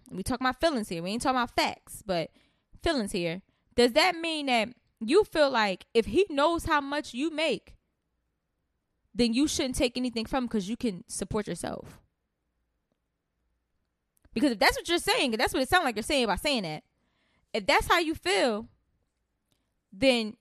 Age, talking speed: 20-39, 180 wpm